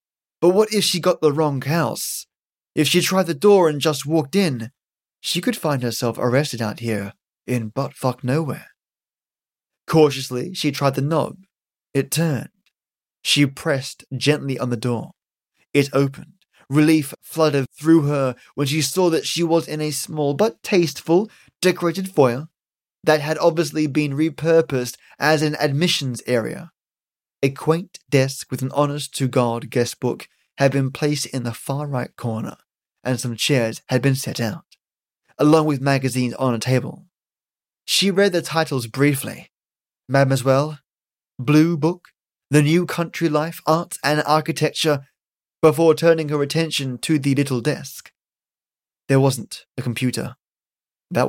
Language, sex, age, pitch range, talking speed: English, male, 20-39, 130-160 Hz, 145 wpm